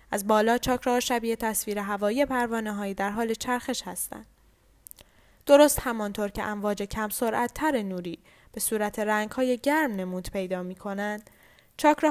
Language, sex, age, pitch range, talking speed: Persian, female, 10-29, 210-255 Hz, 150 wpm